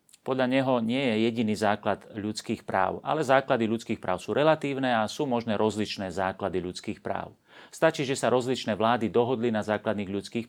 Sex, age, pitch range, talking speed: male, 40-59, 105-130 Hz, 170 wpm